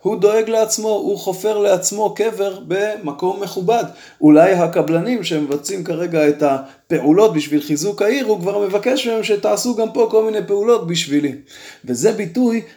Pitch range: 155-205 Hz